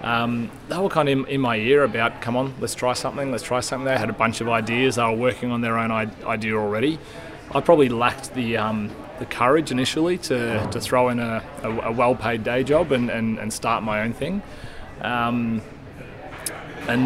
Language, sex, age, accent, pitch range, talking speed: English, male, 20-39, Australian, 110-125 Hz, 210 wpm